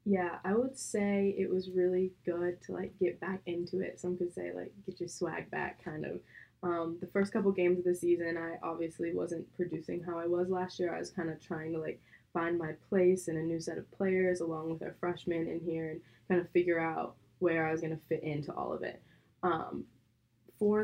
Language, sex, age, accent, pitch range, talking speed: English, female, 20-39, American, 160-180 Hz, 230 wpm